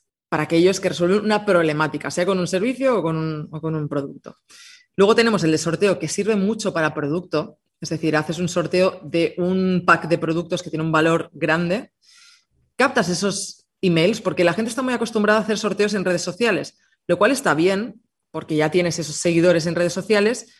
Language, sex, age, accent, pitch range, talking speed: Spanish, female, 20-39, Spanish, 155-205 Hz, 195 wpm